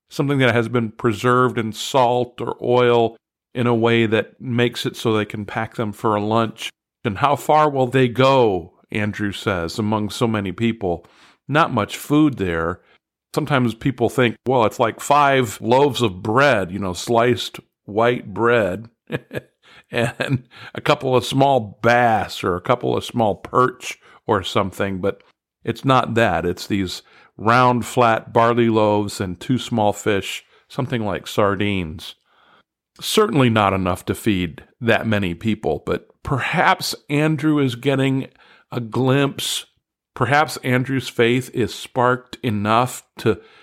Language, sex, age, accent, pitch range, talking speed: English, male, 50-69, American, 110-125 Hz, 145 wpm